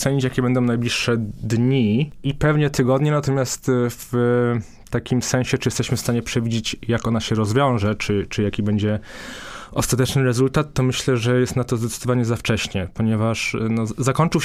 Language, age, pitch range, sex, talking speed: Polish, 20-39, 105-120 Hz, male, 155 wpm